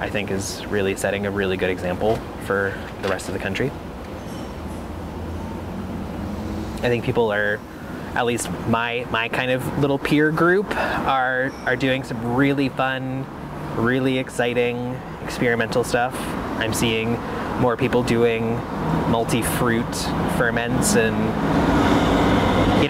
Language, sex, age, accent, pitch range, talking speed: English, male, 20-39, American, 100-125 Hz, 125 wpm